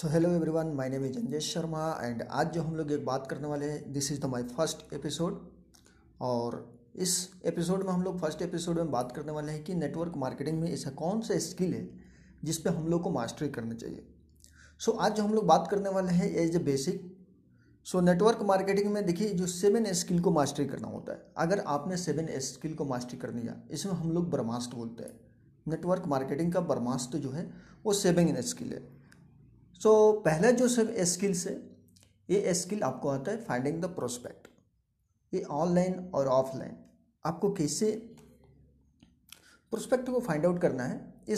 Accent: native